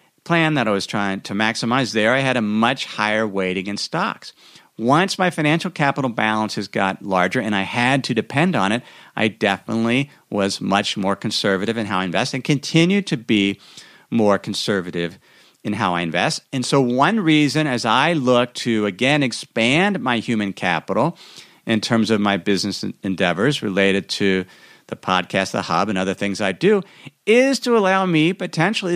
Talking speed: 175 wpm